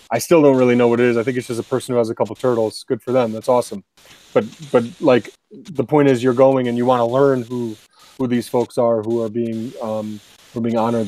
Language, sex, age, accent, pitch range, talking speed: English, male, 30-49, American, 120-140 Hz, 270 wpm